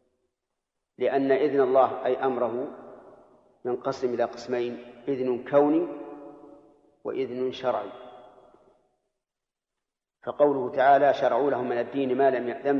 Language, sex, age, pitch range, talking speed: Arabic, male, 40-59, 125-145 Hz, 105 wpm